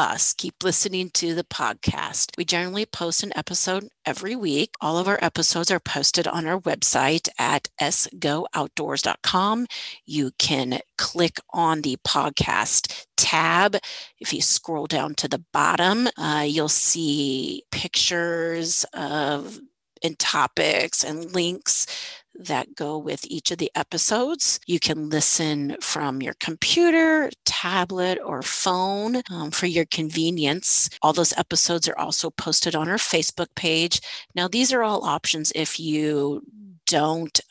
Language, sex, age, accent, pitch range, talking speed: English, female, 40-59, American, 150-185 Hz, 135 wpm